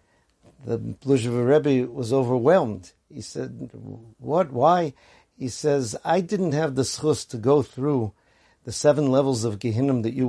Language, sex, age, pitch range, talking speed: English, male, 50-69, 120-150 Hz, 150 wpm